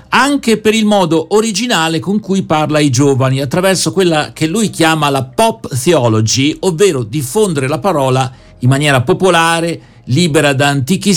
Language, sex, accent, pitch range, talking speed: Italian, male, native, 130-175 Hz, 150 wpm